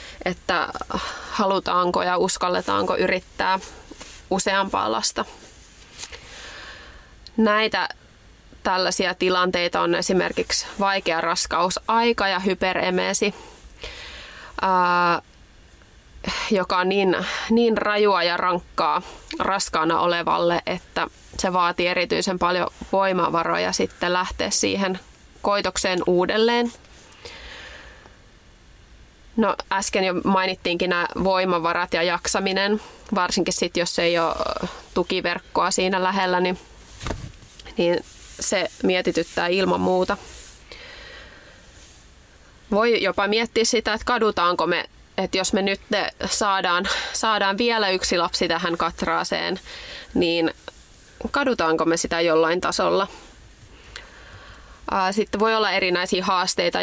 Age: 20-39